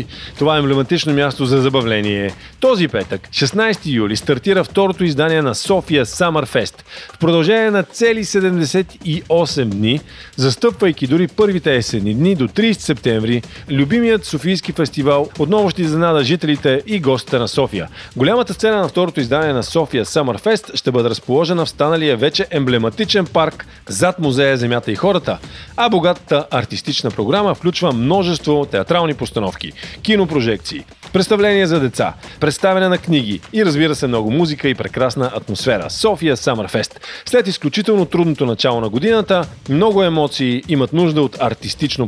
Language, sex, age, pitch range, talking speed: Bulgarian, male, 40-59, 125-180 Hz, 140 wpm